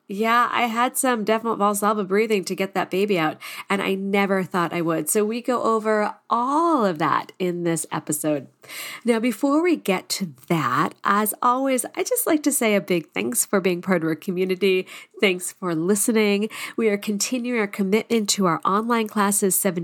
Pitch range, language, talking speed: 175-225 Hz, English, 190 wpm